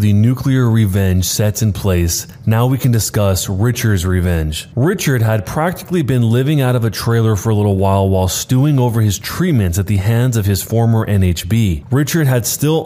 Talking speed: 185 wpm